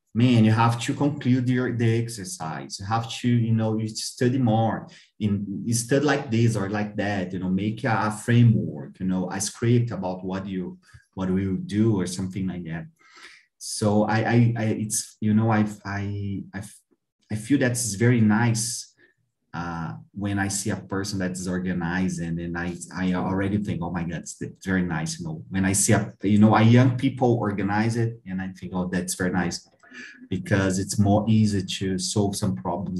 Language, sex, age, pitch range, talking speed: Portuguese, male, 30-49, 95-120 Hz, 200 wpm